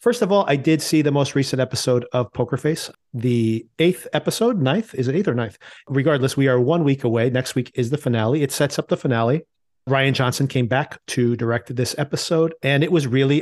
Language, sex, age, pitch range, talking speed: English, male, 40-59, 120-150 Hz, 225 wpm